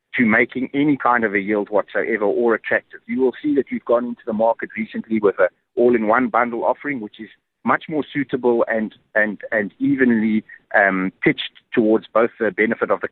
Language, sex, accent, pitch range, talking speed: English, male, South African, 105-130 Hz, 190 wpm